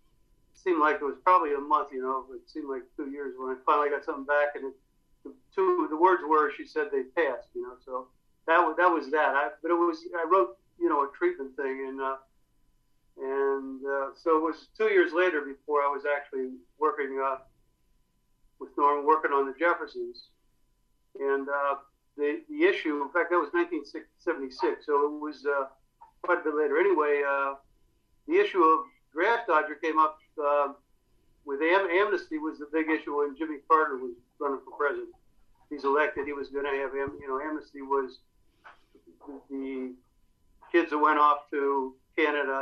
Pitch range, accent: 140-175 Hz, American